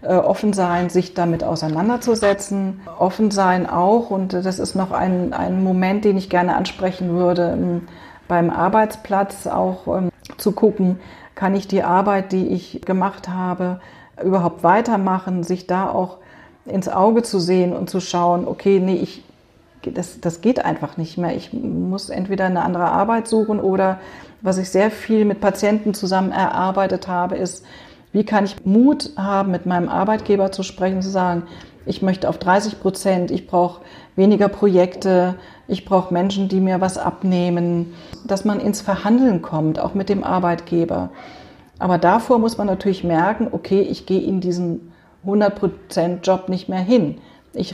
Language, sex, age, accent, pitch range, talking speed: German, female, 40-59, German, 180-200 Hz, 155 wpm